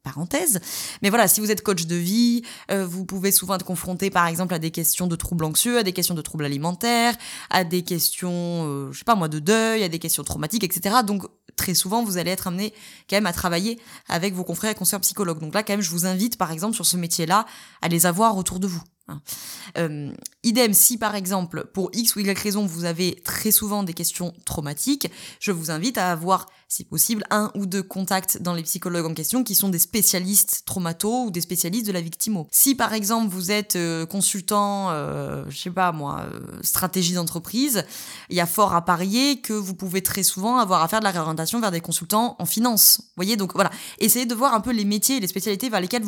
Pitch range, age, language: 175-215 Hz, 20-39, French